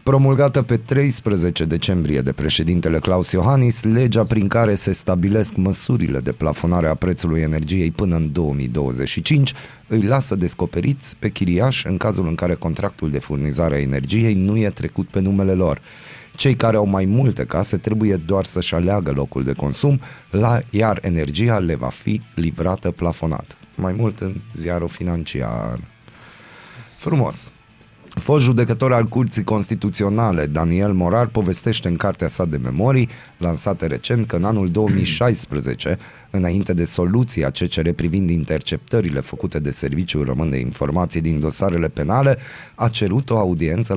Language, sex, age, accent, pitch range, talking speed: Romanian, male, 30-49, native, 85-110 Hz, 145 wpm